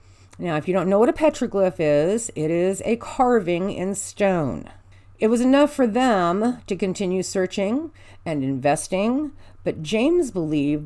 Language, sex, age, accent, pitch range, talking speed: English, female, 50-69, American, 140-215 Hz, 155 wpm